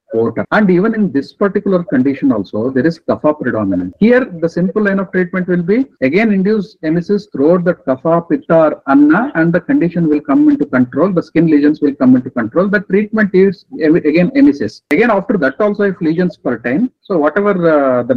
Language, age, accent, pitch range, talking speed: English, 50-69, Indian, 145-200 Hz, 190 wpm